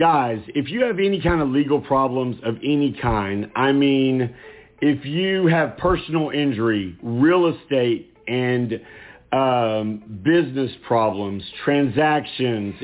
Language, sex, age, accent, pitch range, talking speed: English, male, 50-69, American, 120-160 Hz, 120 wpm